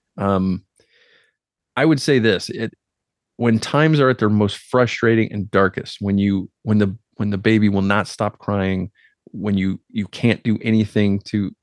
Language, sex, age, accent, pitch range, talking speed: English, male, 30-49, American, 100-115 Hz, 170 wpm